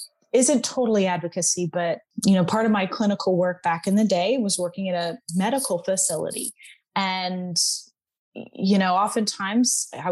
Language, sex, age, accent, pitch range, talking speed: English, female, 20-39, American, 180-230 Hz, 155 wpm